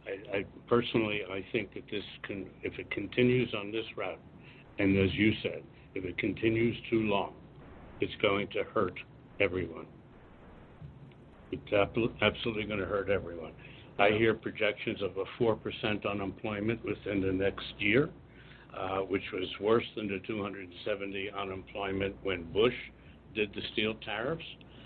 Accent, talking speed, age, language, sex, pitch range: American, 145 wpm, 70-89, English, male, 95-115 Hz